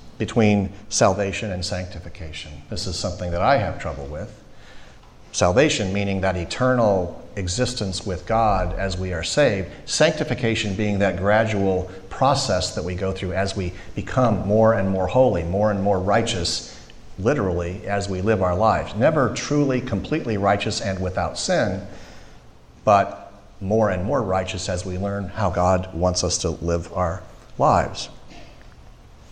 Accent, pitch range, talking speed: American, 90-110 Hz, 145 wpm